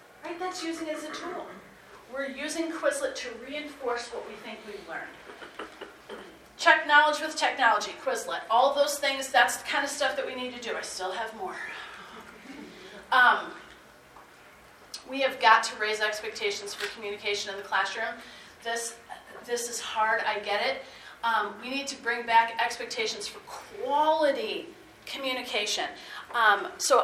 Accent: American